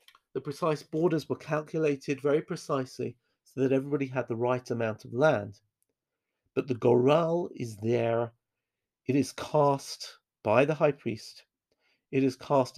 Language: English